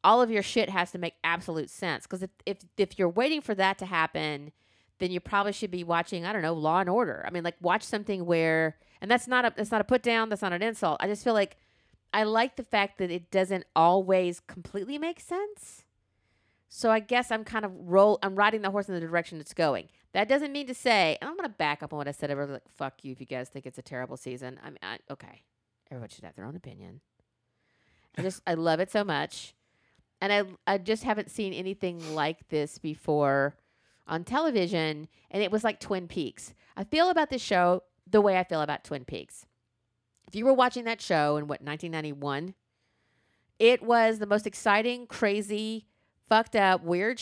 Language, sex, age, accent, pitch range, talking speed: English, female, 40-59, American, 155-215 Hz, 220 wpm